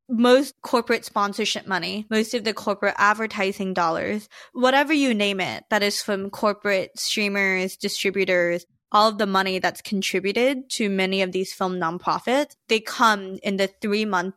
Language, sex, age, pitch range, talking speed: English, female, 20-39, 190-225 Hz, 160 wpm